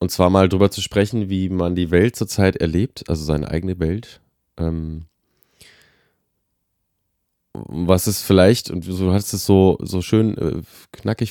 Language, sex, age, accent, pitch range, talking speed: German, male, 20-39, German, 85-105 Hz, 150 wpm